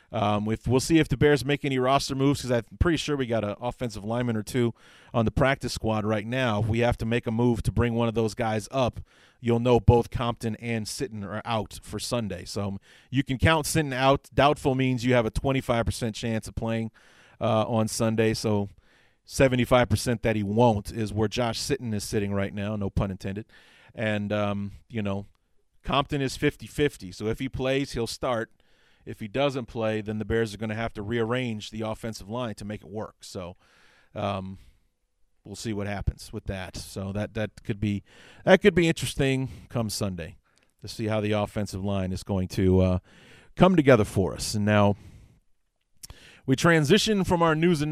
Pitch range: 105-135 Hz